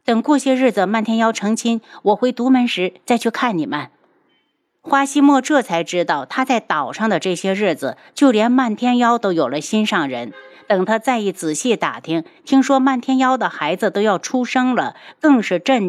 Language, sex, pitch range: Chinese, female, 190-255 Hz